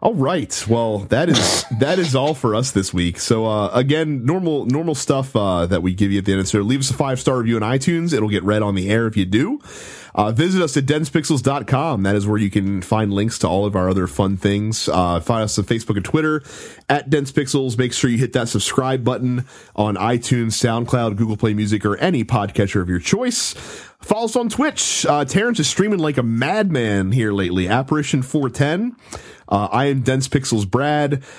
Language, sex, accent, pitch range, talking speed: English, male, American, 105-140 Hz, 215 wpm